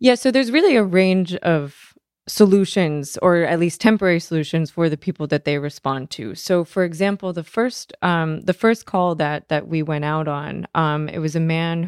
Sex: female